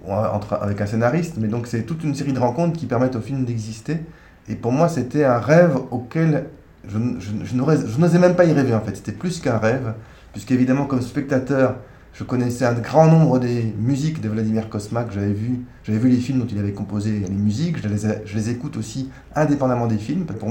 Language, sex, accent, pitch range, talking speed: French, male, French, 110-140 Hz, 220 wpm